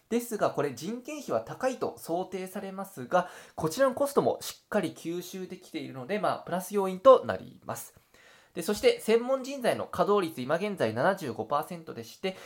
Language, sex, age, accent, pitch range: Japanese, male, 20-39, native, 160-230 Hz